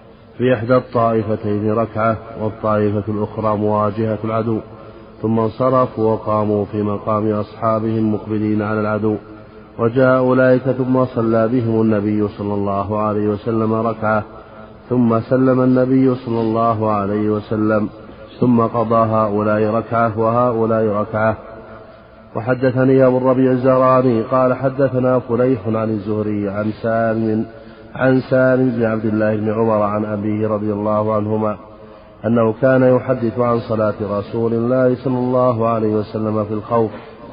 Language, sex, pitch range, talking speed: Arabic, male, 105-120 Hz, 125 wpm